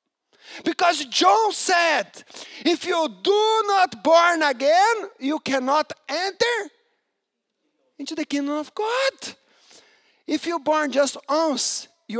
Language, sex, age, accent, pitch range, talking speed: English, male, 50-69, Brazilian, 240-350 Hz, 115 wpm